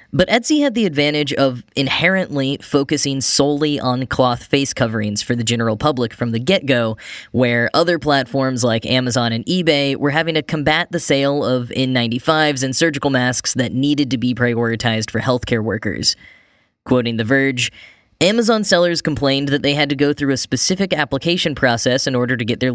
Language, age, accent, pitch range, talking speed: English, 10-29, American, 125-150 Hz, 175 wpm